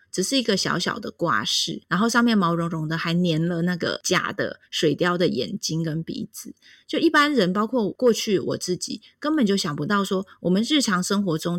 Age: 20-39